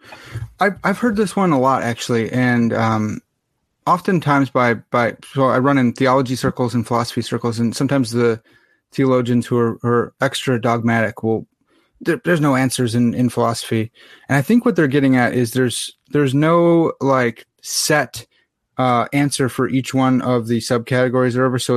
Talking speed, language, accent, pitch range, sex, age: 175 wpm, English, American, 120-145 Hz, male, 30-49